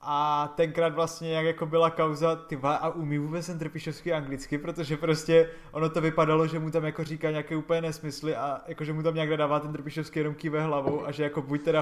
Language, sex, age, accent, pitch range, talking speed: Czech, male, 20-39, native, 140-160 Hz, 230 wpm